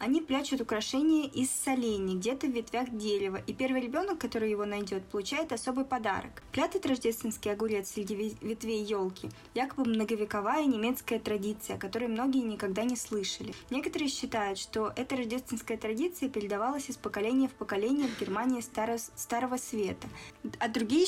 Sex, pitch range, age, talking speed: female, 215-265 Hz, 20-39, 145 wpm